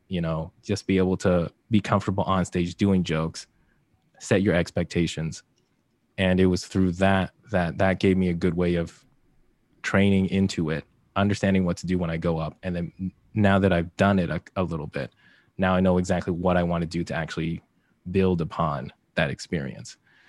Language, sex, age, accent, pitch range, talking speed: English, male, 20-39, American, 90-100 Hz, 190 wpm